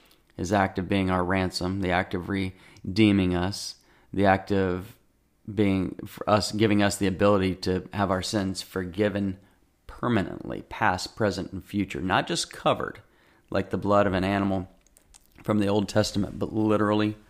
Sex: male